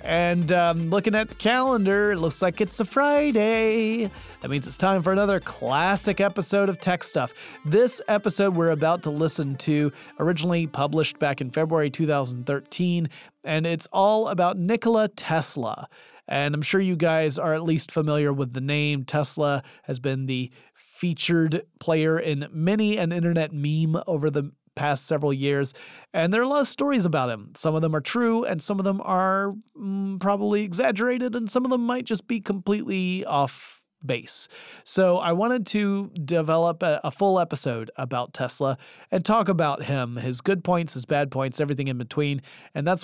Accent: American